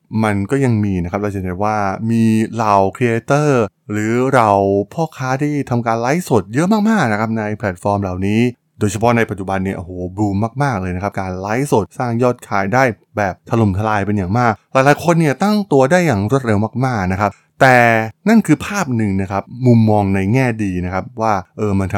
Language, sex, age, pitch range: Thai, male, 20-39, 100-125 Hz